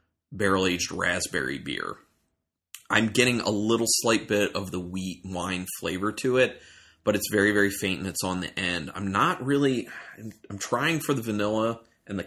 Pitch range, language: 90-115 Hz, English